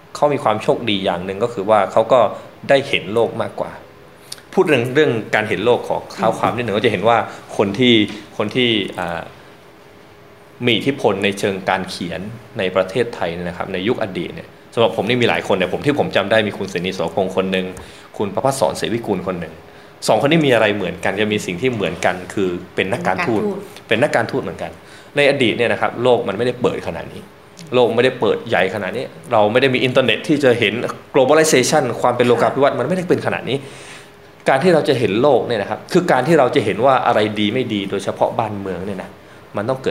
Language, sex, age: Thai, male, 20-39